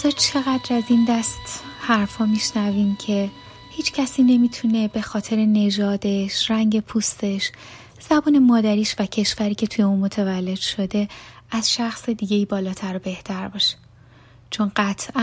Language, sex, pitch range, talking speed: Persian, female, 195-225 Hz, 135 wpm